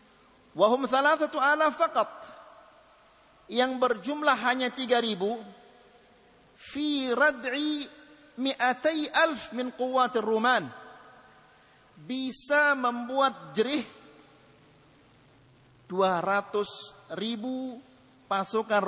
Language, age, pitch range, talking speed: Malay, 50-69, 165-265 Hz, 75 wpm